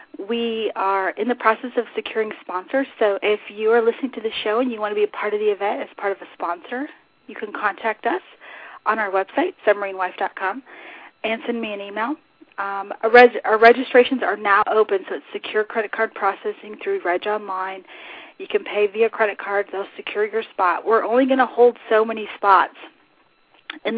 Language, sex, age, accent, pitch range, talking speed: English, female, 30-49, American, 195-245 Hz, 195 wpm